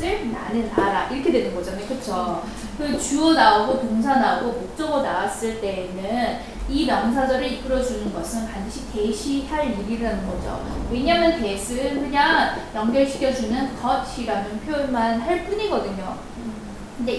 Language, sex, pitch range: Korean, female, 220-285 Hz